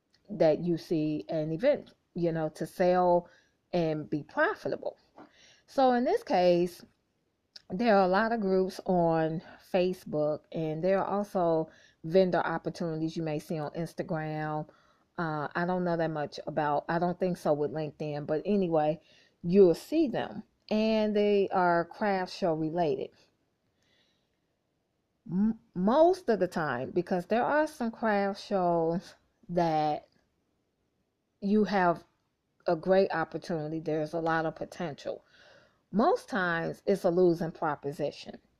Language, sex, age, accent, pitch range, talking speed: English, female, 30-49, American, 165-200 Hz, 135 wpm